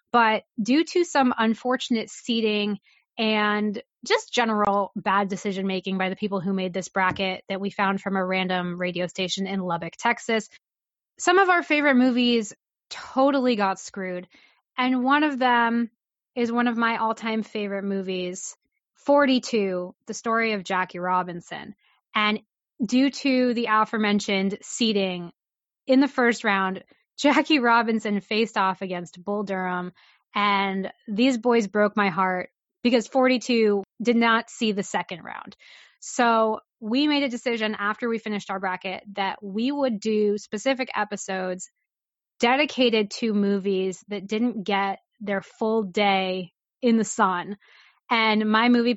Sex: female